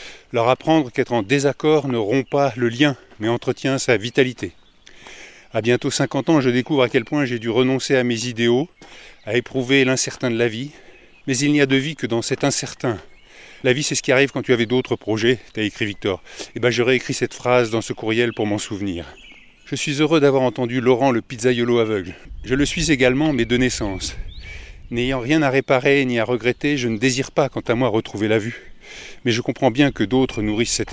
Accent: French